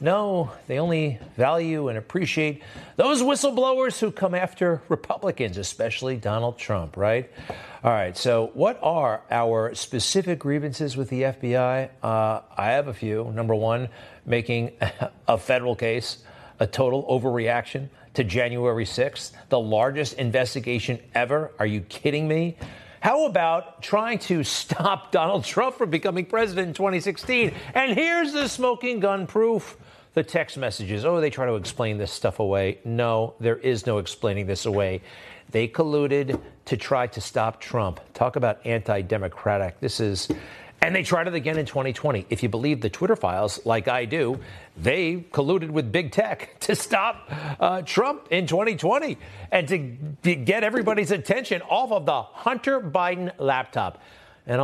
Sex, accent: male, American